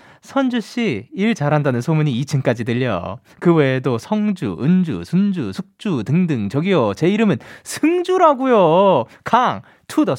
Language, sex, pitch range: Korean, male, 130-220 Hz